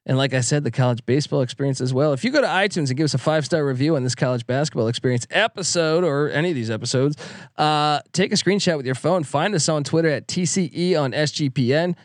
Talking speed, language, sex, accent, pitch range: 240 wpm, English, male, American, 140-170 Hz